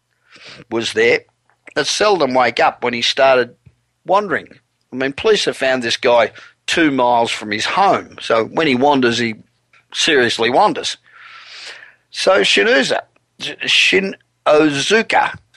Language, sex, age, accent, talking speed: English, male, 50-69, Australian, 120 wpm